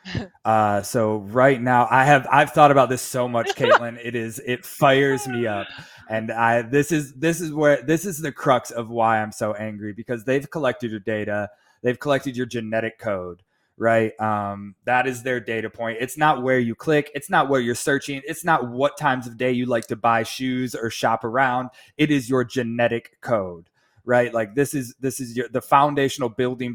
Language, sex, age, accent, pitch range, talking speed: English, male, 20-39, American, 115-140 Hz, 205 wpm